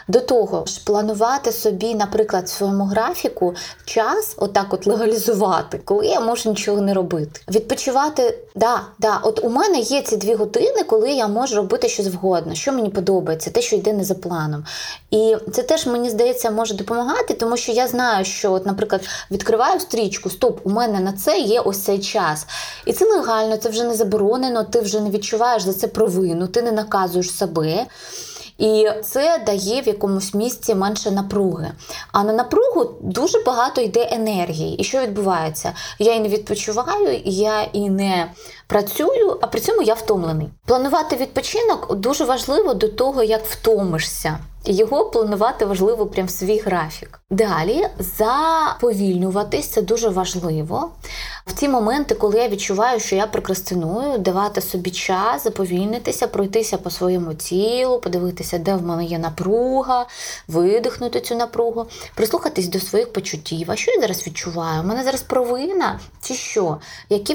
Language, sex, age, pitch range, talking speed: Ukrainian, female, 20-39, 195-245 Hz, 160 wpm